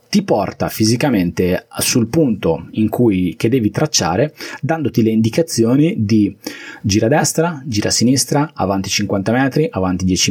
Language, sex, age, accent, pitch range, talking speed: Italian, male, 20-39, native, 100-130 Hz, 145 wpm